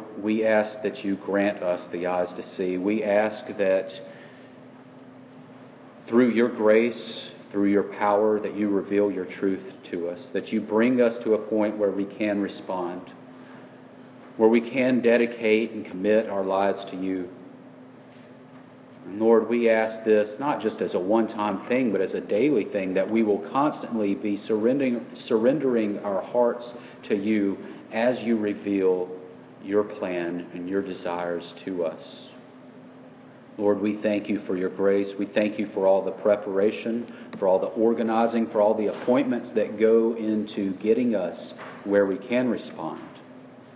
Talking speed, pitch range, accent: 155 wpm, 95-110 Hz, American